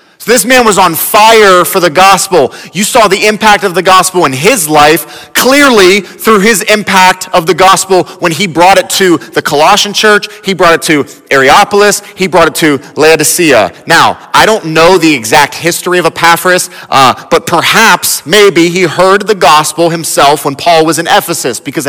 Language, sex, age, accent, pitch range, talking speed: English, male, 30-49, American, 155-205 Hz, 185 wpm